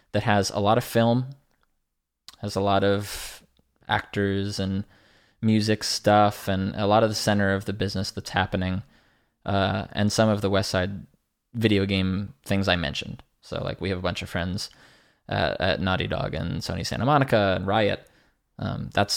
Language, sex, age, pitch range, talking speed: English, male, 20-39, 100-130 Hz, 180 wpm